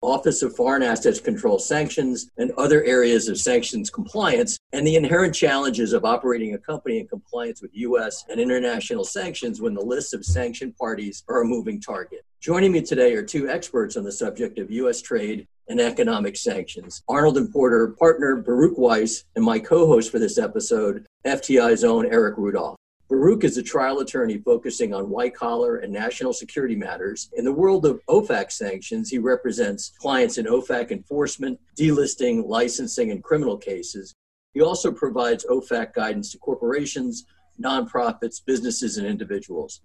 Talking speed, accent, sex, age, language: 165 wpm, American, male, 50-69, English